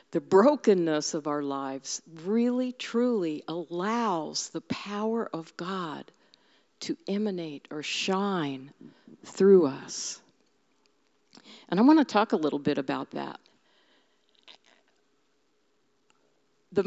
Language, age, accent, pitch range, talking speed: English, 60-79, American, 160-235 Hz, 105 wpm